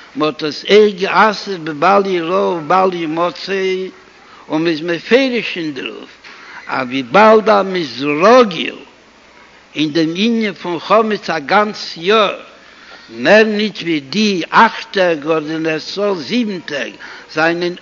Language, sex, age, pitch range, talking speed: Hebrew, male, 60-79, 170-215 Hz, 85 wpm